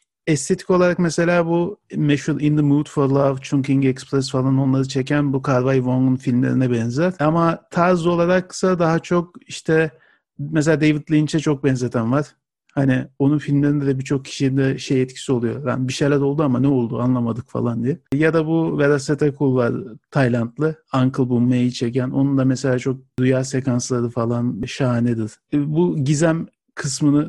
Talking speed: 160 wpm